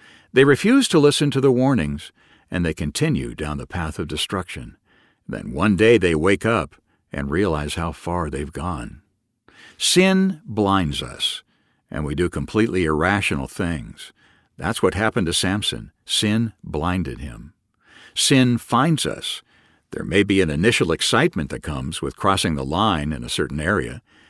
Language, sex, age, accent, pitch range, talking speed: English, male, 60-79, American, 85-130 Hz, 155 wpm